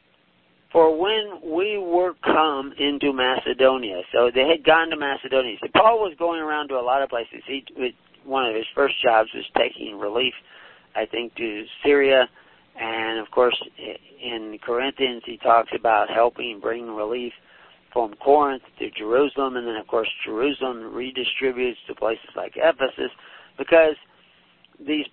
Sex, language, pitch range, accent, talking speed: male, English, 115-145 Hz, American, 145 wpm